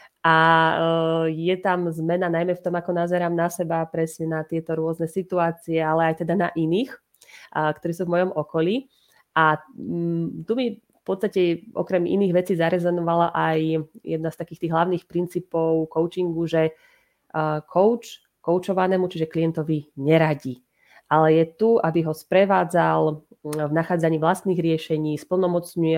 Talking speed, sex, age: 140 wpm, female, 30-49